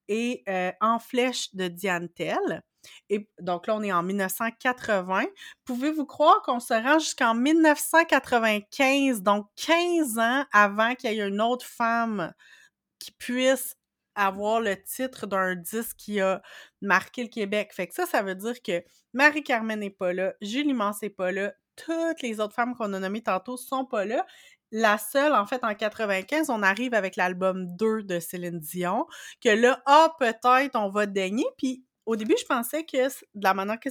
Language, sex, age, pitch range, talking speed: French, female, 30-49, 195-255 Hz, 180 wpm